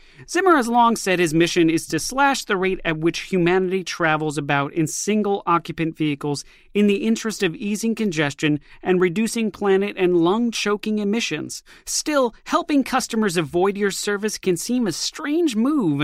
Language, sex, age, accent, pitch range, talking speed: English, male, 30-49, American, 170-230 Hz, 160 wpm